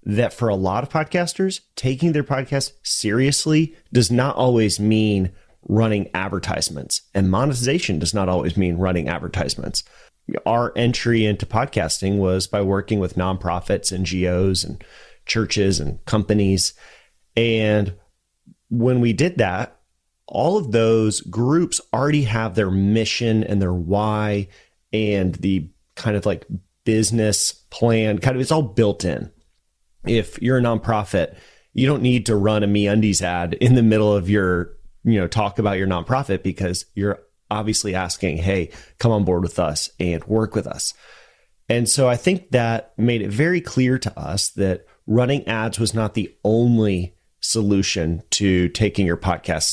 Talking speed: 155 wpm